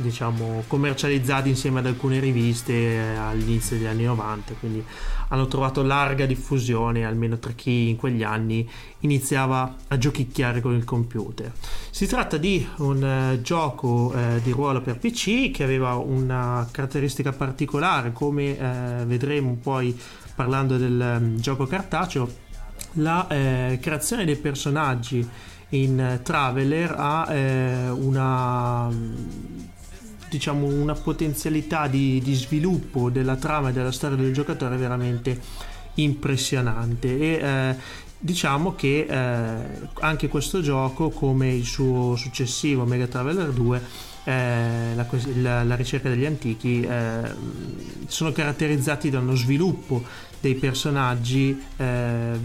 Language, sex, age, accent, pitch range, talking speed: Italian, male, 30-49, native, 120-140 Hz, 120 wpm